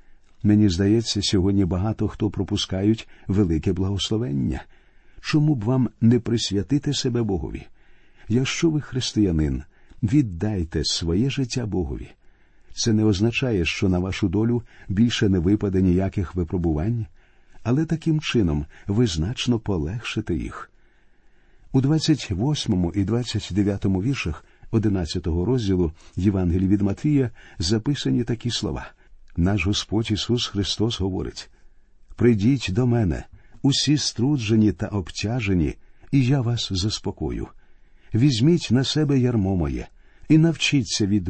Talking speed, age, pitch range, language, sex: 115 wpm, 50-69, 95-125 Hz, Ukrainian, male